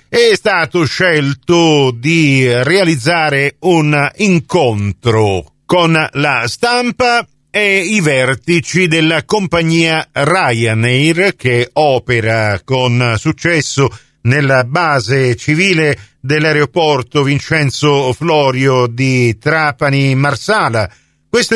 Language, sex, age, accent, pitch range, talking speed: Italian, male, 50-69, native, 125-170 Hz, 80 wpm